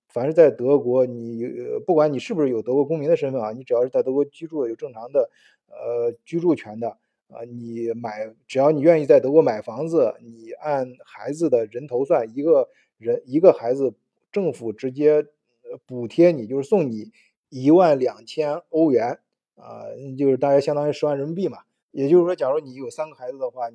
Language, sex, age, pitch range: Chinese, male, 20-39, 130-180 Hz